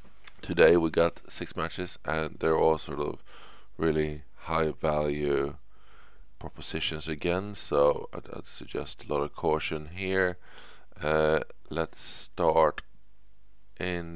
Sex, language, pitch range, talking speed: male, English, 75-90 Hz, 115 wpm